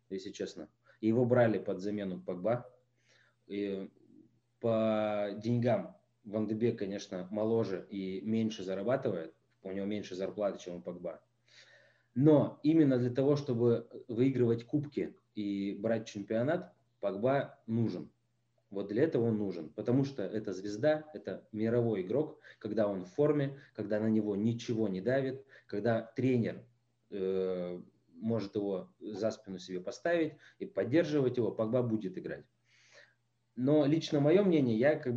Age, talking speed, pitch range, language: 20-39, 135 wpm, 105-125 Hz, Russian